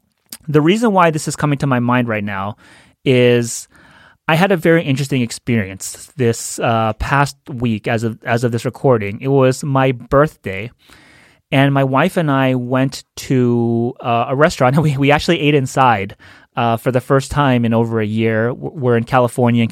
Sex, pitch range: male, 115-145 Hz